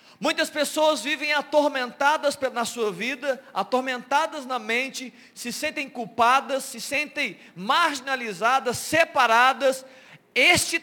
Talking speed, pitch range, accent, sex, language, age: 100 wpm, 205-280 Hz, Brazilian, male, Portuguese, 40-59